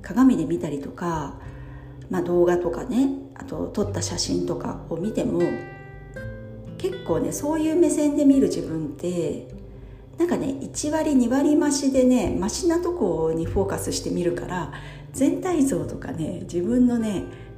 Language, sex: Japanese, female